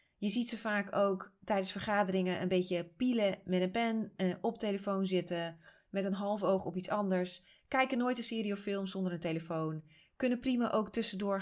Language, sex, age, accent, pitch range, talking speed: Dutch, female, 30-49, Dutch, 180-225 Hz, 195 wpm